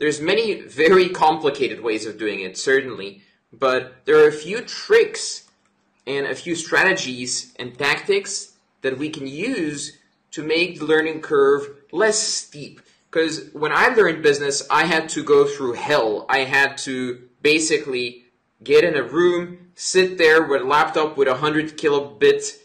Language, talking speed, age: English, 160 wpm, 20-39